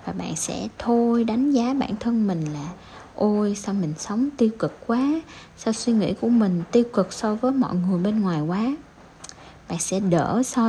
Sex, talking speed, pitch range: female, 195 wpm, 175-235 Hz